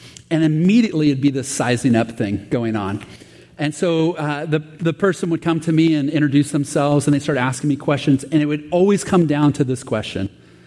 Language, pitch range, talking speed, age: English, 130-180 Hz, 215 wpm, 40-59